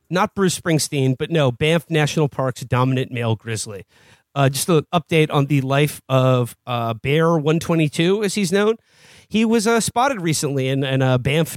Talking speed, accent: 170 wpm, American